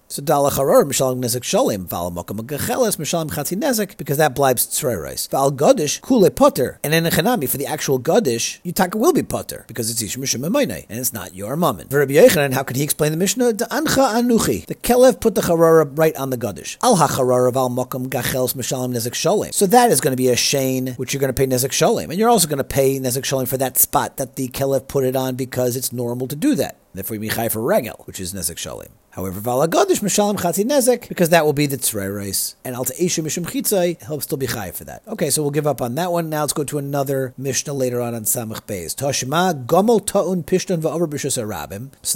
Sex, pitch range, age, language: male, 125-175 Hz, 40-59, English